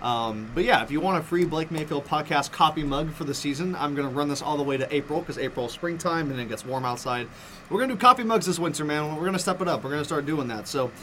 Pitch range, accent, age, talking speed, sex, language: 140-185 Hz, American, 20-39, 310 wpm, male, English